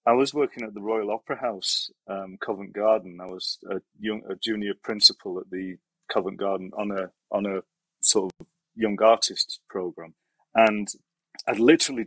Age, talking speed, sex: 30-49, 170 wpm, male